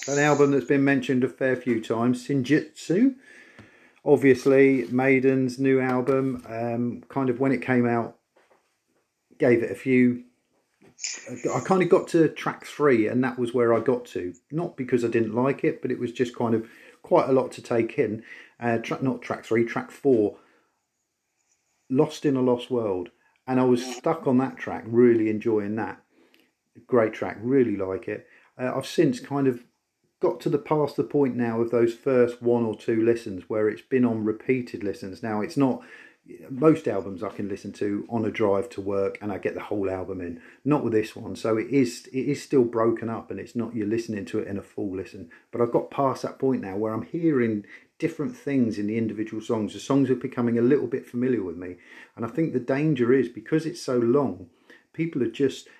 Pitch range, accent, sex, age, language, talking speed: 115-135 Hz, British, male, 40-59, English, 205 wpm